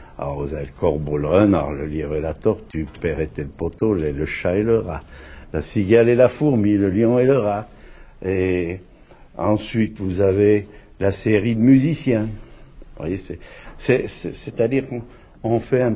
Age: 70-89